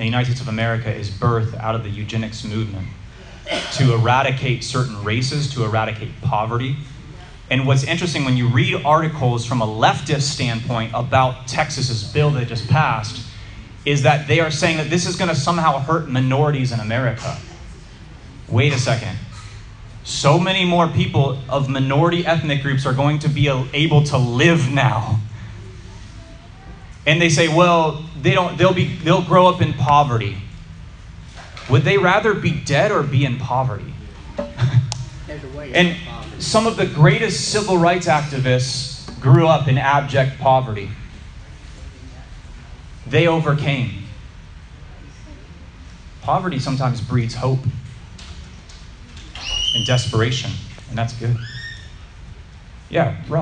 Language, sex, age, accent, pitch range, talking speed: English, male, 30-49, American, 110-150 Hz, 135 wpm